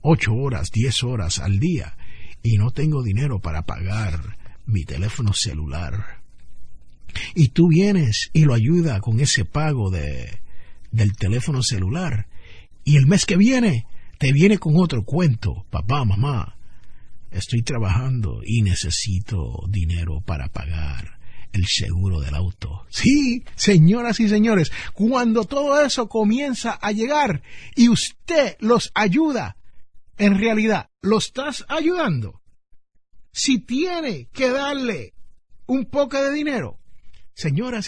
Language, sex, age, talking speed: Spanish, male, 50-69, 125 wpm